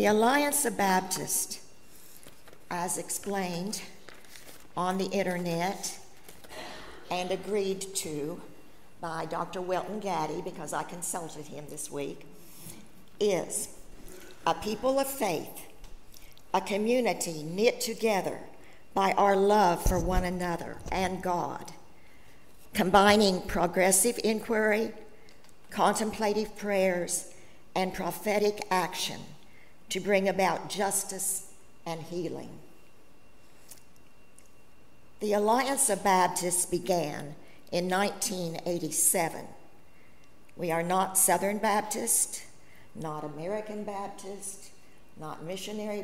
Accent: American